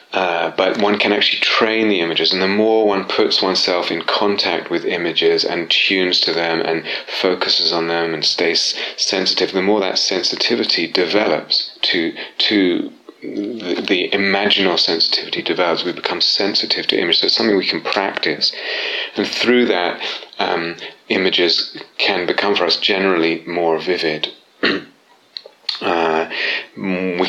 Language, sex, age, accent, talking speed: English, male, 30-49, British, 145 wpm